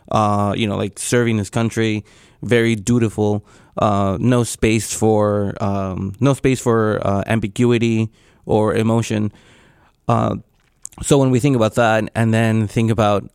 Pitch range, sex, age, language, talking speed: 105-125 Hz, male, 20-39, English, 145 wpm